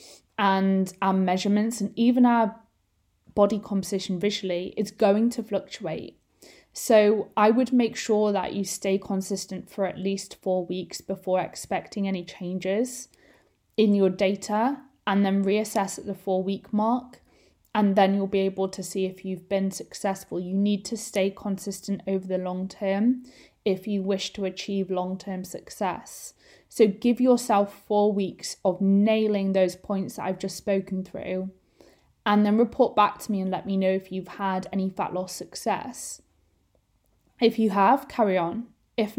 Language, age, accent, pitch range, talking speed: English, 20-39, British, 190-215 Hz, 160 wpm